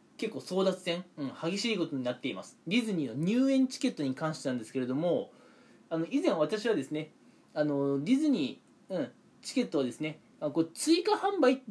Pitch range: 160-260 Hz